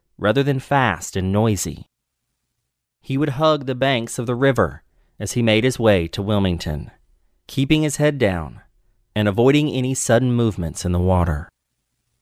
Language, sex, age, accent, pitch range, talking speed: English, male, 30-49, American, 100-135 Hz, 155 wpm